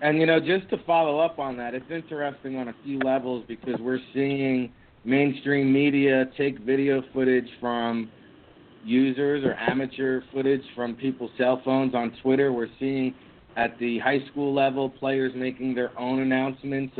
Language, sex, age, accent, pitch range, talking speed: English, male, 40-59, American, 125-140 Hz, 160 wpm